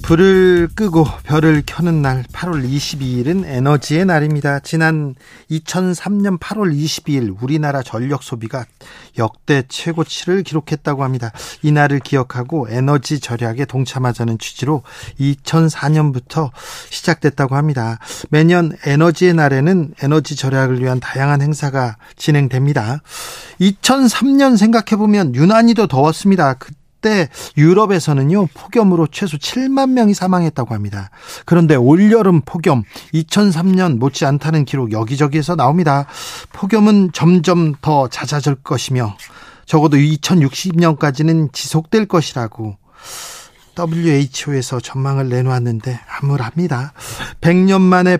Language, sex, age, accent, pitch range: Korean, male, 40-59, native, 135-175 Hz